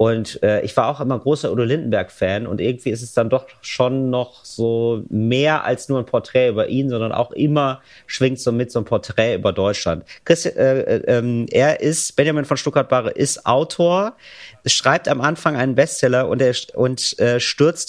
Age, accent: 40-59, German